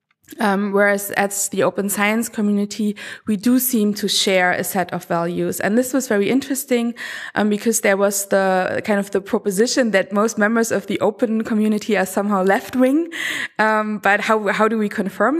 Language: German